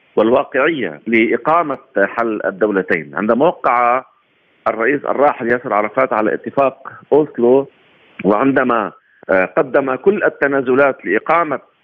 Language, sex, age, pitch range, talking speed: Arabic, male, 50-69, 110-135 Hz, 90 wpm